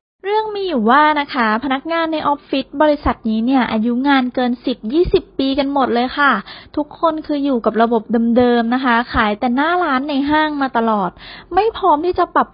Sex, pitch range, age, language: female, 235-305 Hz, 20-39, Thai